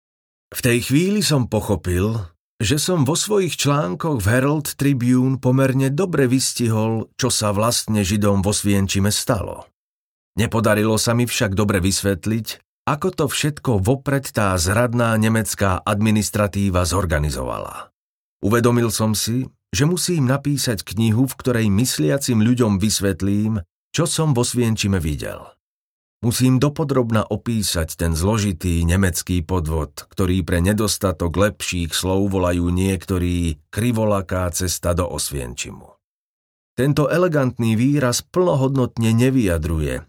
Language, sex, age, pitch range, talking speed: Slovak, male, 40-59, 90-125 Hz, 115 wpm